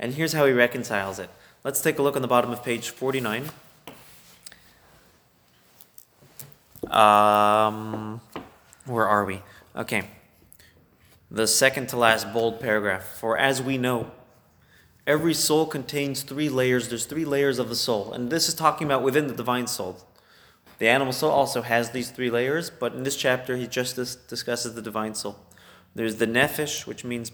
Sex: male